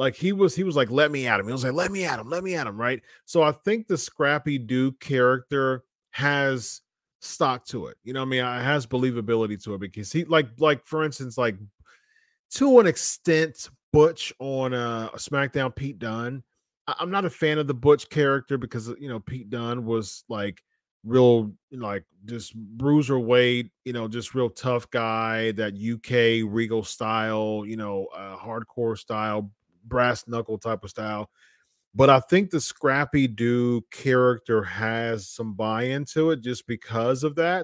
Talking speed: 185 wpm